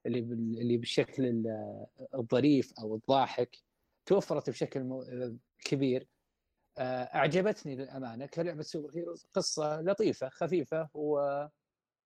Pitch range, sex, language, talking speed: 120-170 Hz, male, Arabic, 80 wpm